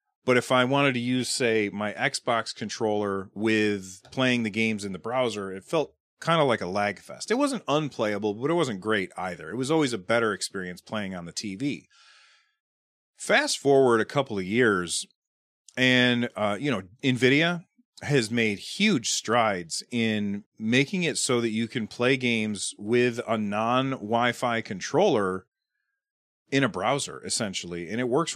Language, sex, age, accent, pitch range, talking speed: English, male, 30-49, American, 105-140 Hz, 165 wpm